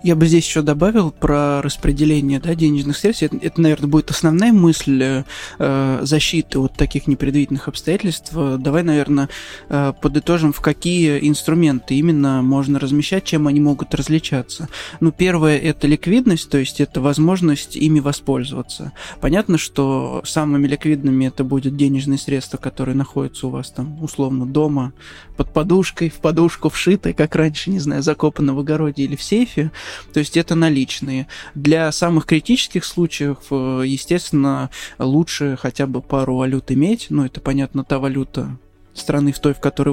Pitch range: 135-155 Hz